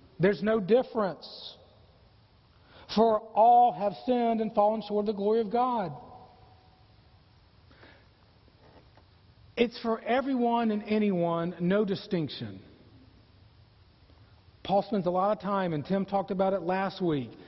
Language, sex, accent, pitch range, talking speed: English, male, American, 150-245 Hz, 120 wpm